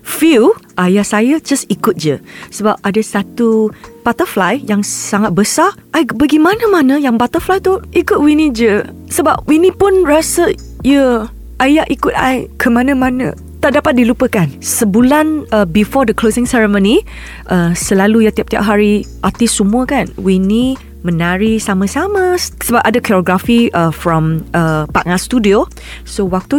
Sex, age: female, 20-39